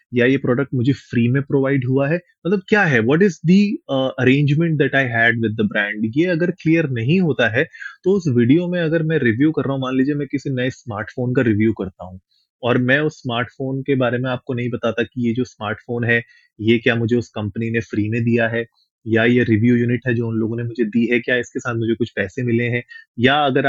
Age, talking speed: 30-49, 240 wpm